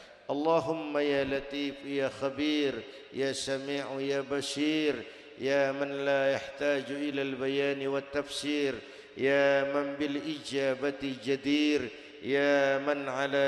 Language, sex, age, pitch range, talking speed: Indonesian, male, 50-69, 135-150 Hz, 100 wpm